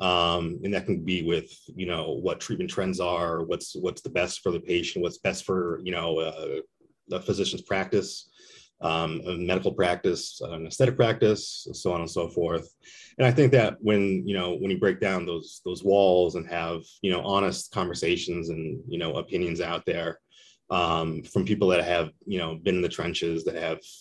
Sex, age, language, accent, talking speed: male, 30-49, English, American, 195 wpm